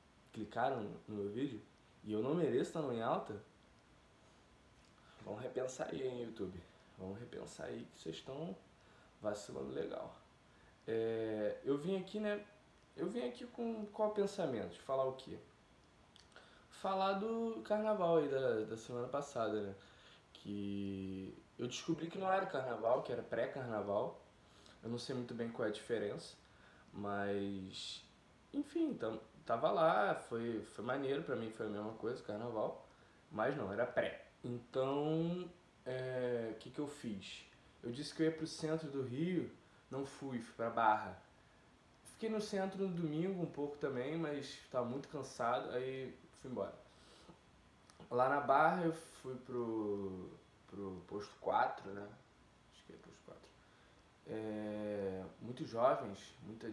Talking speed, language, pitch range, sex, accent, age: 150 wpm, Portuguese, 110-165 Hz, male, Brazilian, 20-39